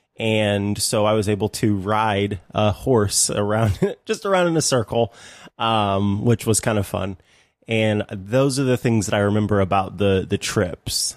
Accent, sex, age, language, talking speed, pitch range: American, male, 20-39, English, 175 wpm, 105-130 Hz